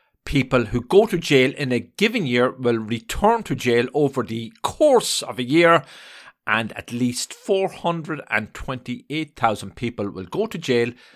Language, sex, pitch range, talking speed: English, male, 120-150 Hz, 150 wpm